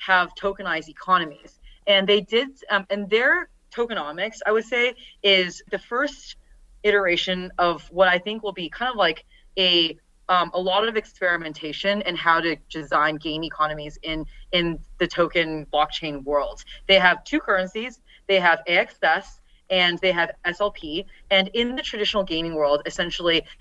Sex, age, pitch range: female, 30-49, 165-200 Hz